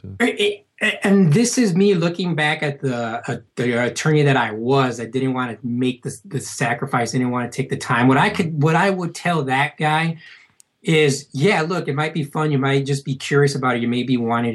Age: 20-39